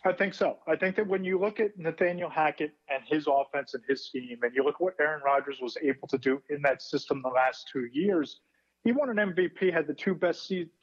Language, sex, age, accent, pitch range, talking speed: English, male, 40-59, American, 140-180 Hz, 250 wpm